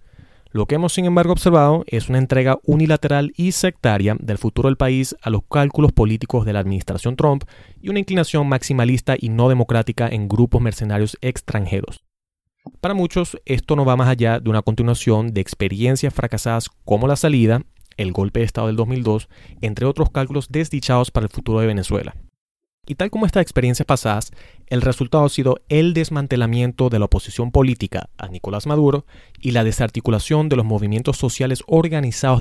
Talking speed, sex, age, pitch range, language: 170 wpm, male, 30-49, 110-145 Hz, Spanish